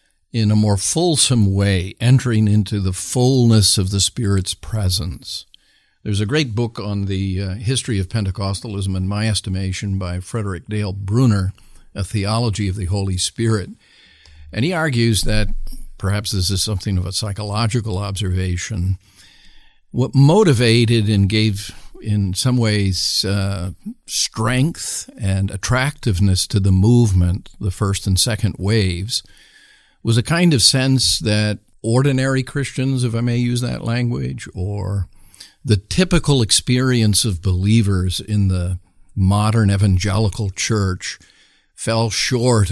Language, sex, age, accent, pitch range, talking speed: English, male, 50-69, American, 95-115 Hz, 130 wpm